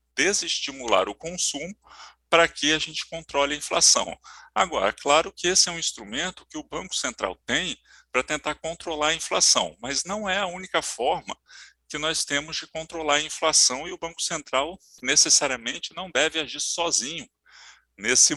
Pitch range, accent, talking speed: 150-180 Hz, Brazilian, 165 wpm